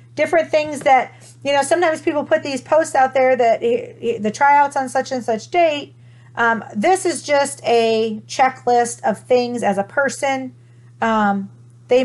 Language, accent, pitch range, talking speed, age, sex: English, American, 180-255 Hz, 165 wpm, 40-59, female